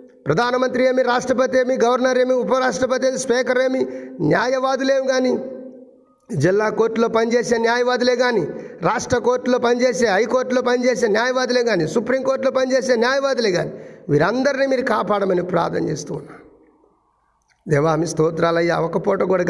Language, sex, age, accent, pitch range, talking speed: Telugu, male, 50-69, native, 185-255 Hz, 120 wpm